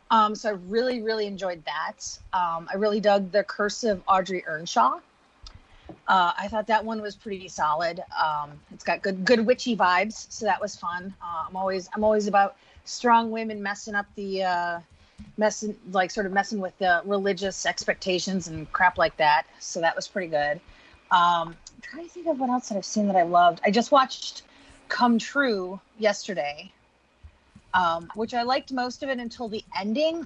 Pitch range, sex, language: 185-225 Hz, female, English